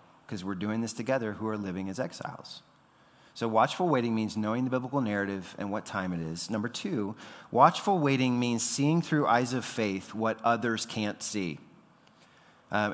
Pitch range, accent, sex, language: 110-140 Hz, American, male, English